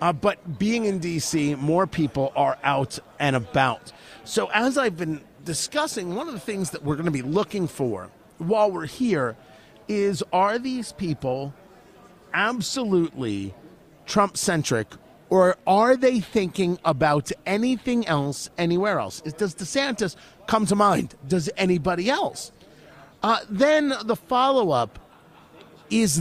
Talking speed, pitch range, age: 135 wpm, 155-215 Hz, 40-59